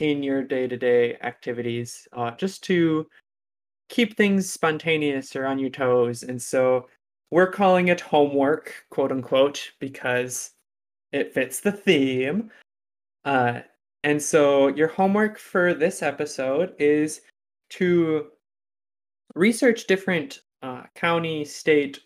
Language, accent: English, American